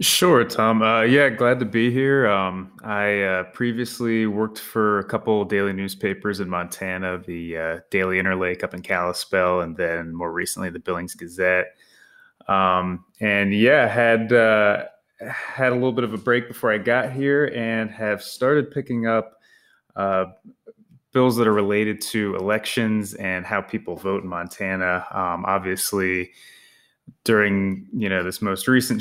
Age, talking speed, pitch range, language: 20-39, 160 wpm, 90-110 Hz, English